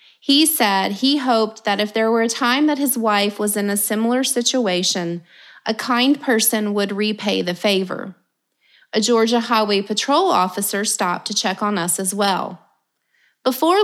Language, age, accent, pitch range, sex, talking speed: English, 30-49, American, 205-260 Hz, female, 165 wpm